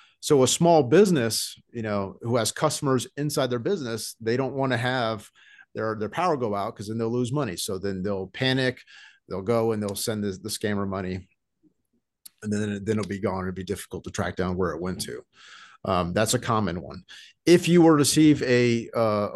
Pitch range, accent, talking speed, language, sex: 105-130 Hz, American, 210 wpm, English, male